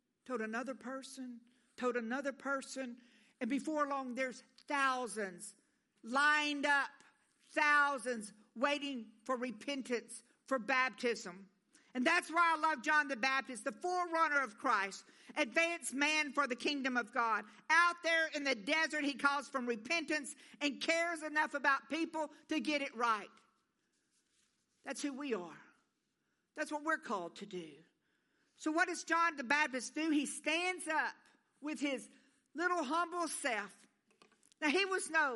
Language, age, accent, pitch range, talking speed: English, 50-69, American, 240-305 Hz, 145 wpm